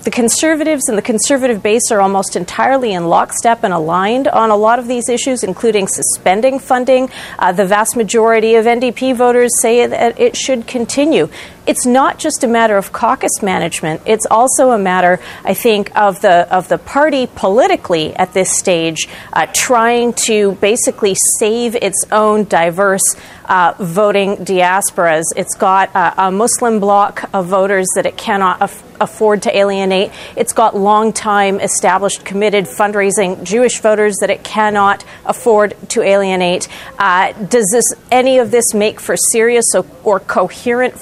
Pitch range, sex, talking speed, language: 190-235 Hz, female, 160 wpm, English